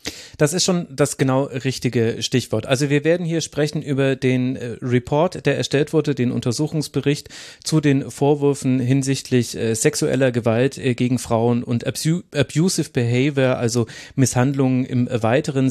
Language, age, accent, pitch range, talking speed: German, 30-49, German, 125-145 Hz, 135 wpm